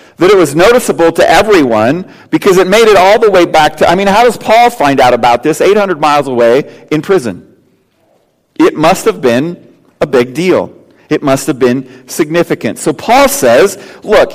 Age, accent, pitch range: 40-59, American, 150-220 Hz